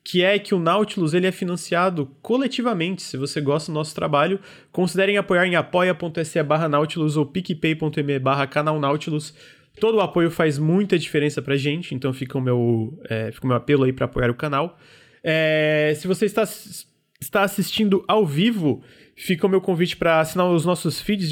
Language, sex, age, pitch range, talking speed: Portuguese, male, 20-39, 140-180 Hz, 185 wpm